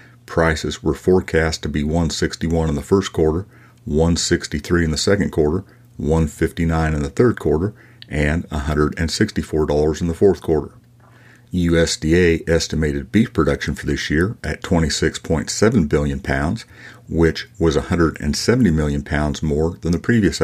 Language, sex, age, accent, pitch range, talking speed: English, male, 50-69, American, 75-95 Hz, 135 wpm